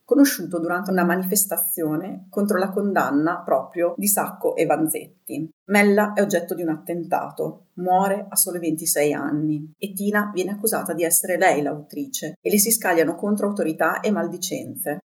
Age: 40-59